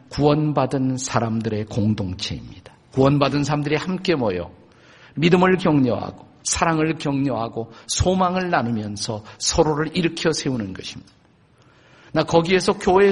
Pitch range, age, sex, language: 120-165 Hz, 50-69, male, Korean